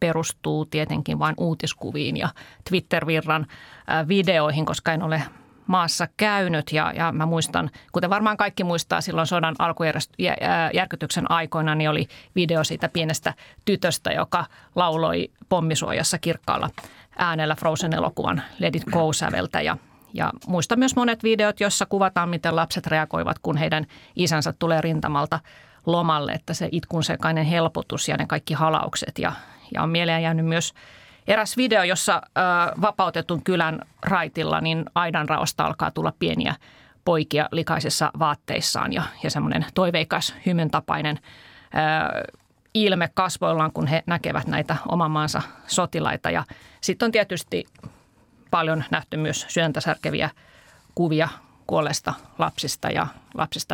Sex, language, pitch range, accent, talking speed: female, Finnish, 155-175 Hz, native, 125 wpm